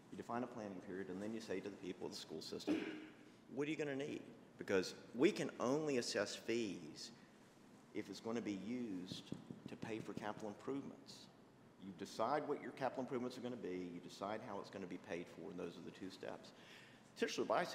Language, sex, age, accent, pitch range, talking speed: English, male, 50-69, American, 90-120 Hz, 215 wpm